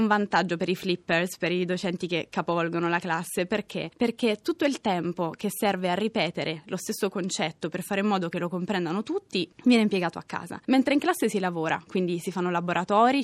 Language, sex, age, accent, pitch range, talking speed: Italian, female, 20-39, native, 175-210 Hz, 200 wpm